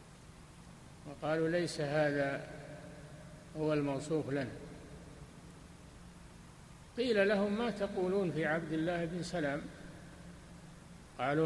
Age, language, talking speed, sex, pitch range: 60-79, Arabic, 85 wpm, male, 140-160 Hz